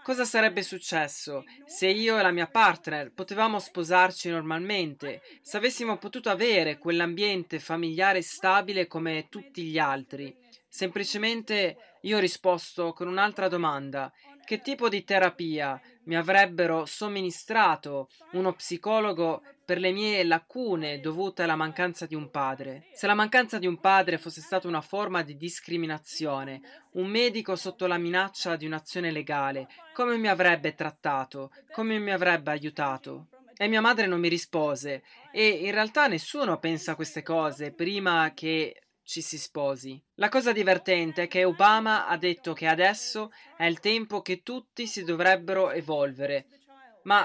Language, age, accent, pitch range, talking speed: Italian, 20-39, native, 160-205 Hz, 145 wpm